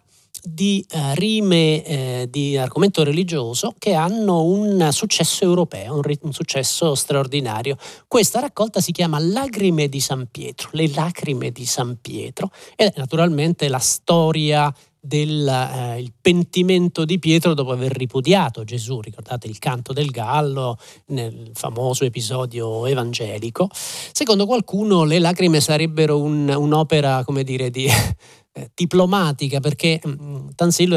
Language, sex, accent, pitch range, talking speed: Italian, male, native, 135-175 Hz, 130 wpm